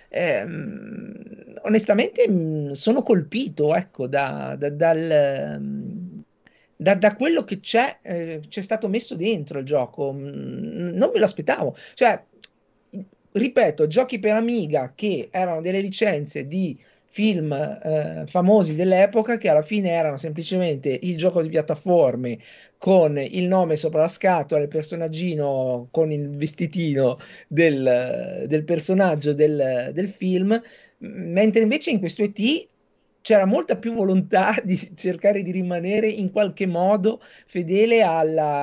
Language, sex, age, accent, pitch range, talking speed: Italian, male, 50-69, native, 160-215 Hz, 125 wpm